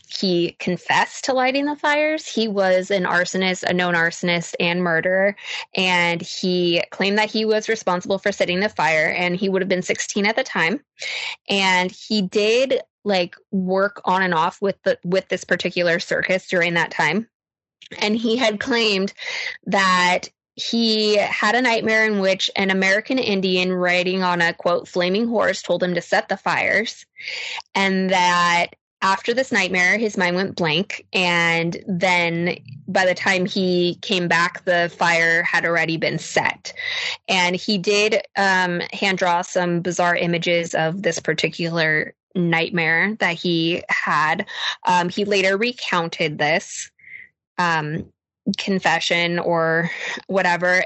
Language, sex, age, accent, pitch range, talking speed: English, female, 20-39, American, 175-205 Hz, 150 wpm